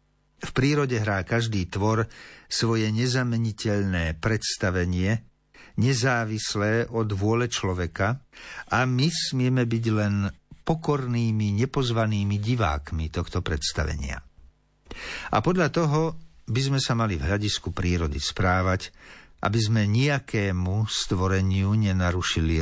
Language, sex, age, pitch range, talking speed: Slovak, male, 60-79, 95-120 Hz, 100 wpm